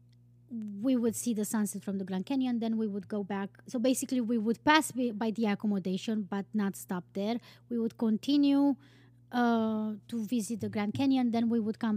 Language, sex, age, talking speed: English, female, 20-39, 200 wpm